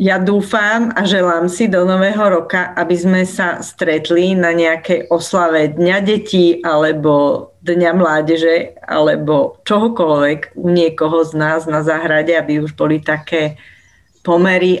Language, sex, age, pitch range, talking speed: Slovak, female, 40-59, 155-195 Hz, 130 wpm